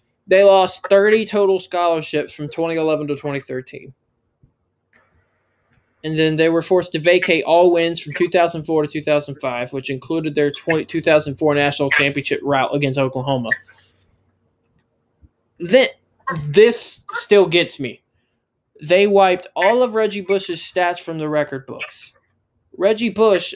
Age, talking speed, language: 20-39, 120 wpm, English